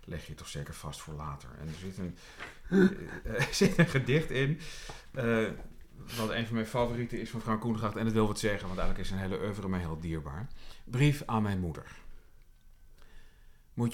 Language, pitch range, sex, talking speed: Dutch, 80-120 Hz, male, 195 wpm